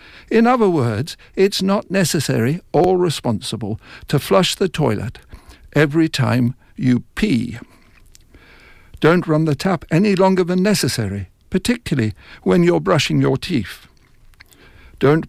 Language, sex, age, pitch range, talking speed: English, male, 60-79, 125-175 Hz, 120 wpm